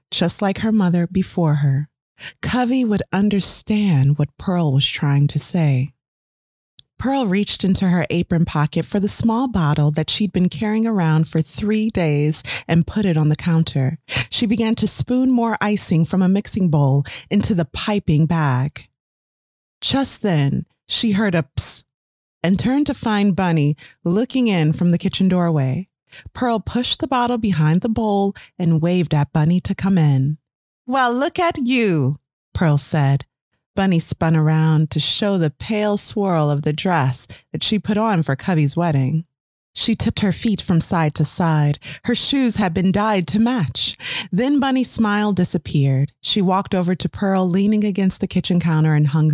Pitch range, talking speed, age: 150-205 Hz, 170 wpm, 30-49